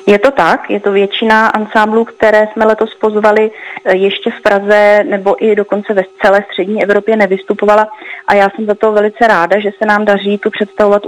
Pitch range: 190-215 Hz